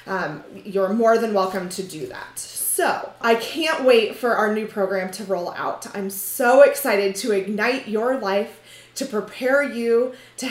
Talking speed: 170 wpm